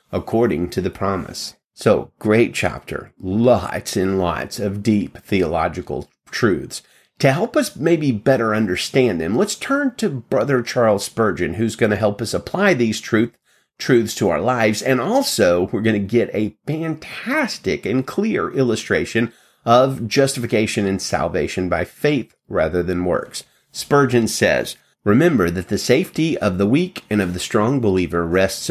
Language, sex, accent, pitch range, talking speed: English, male, American, 105-160 Hz, 155 wpm